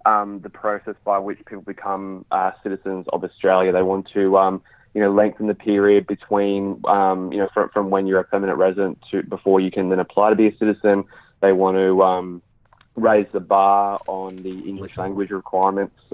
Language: English